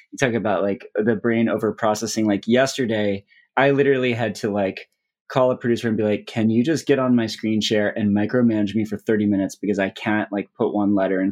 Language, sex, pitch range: English, male, 105-120 Hz